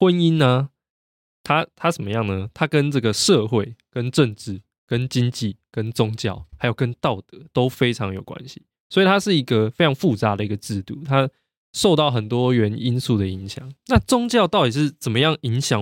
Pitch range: 110-150 Hz